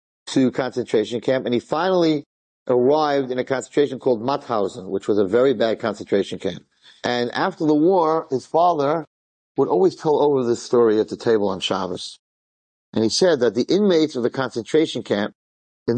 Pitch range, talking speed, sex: 120-160 Hz, 175 wpm, male